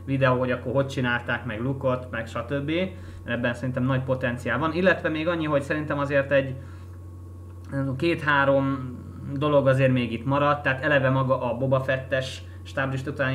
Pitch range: 125-150 Hz